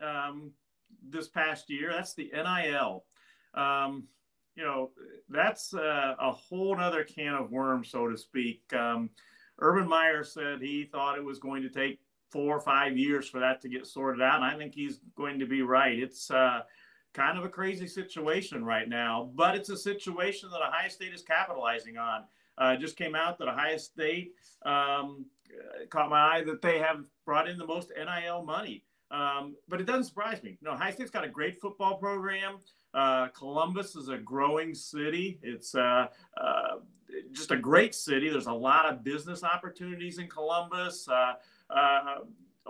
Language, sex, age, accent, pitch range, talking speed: English, male, 50-69, American, 135-180 Hz, 185 wpm